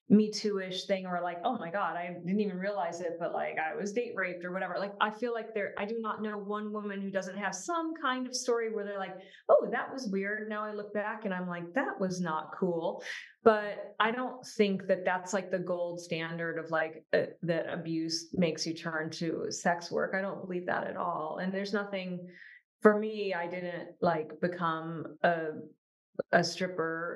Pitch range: 170-200 Hz